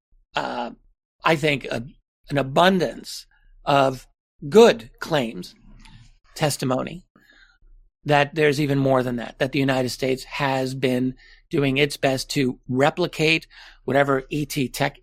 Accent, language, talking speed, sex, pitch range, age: American, English, 115 wpm, male, 125-150 Hz, 50-69